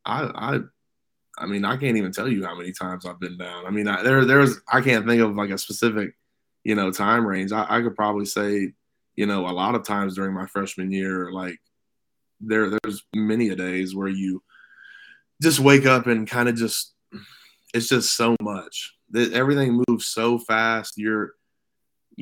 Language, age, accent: English, 20-39, American